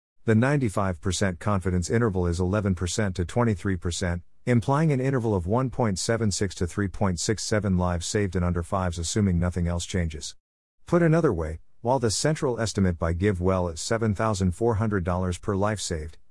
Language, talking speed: English, 140 wpm